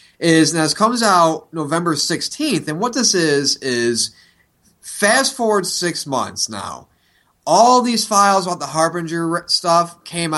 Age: 20-39